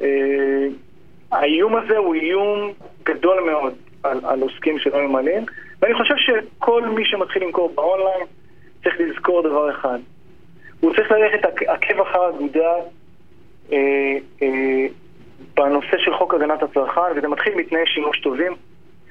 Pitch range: 145-195 Hz